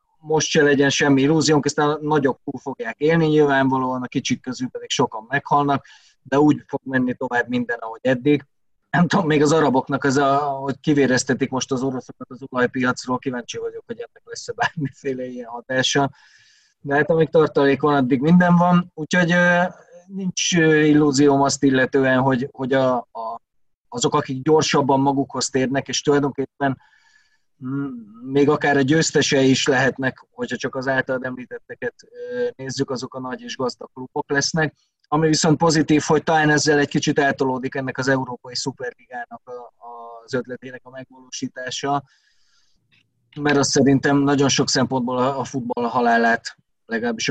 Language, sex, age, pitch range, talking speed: Hungarian, male, 20-39, 130-150 Hz, 145 wpm